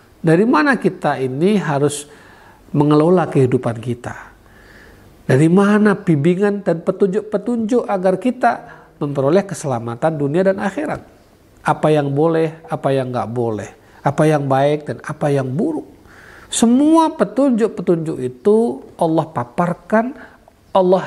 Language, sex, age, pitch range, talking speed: Indonesian, male, 50-69, 135-205 Hz, 115 wpm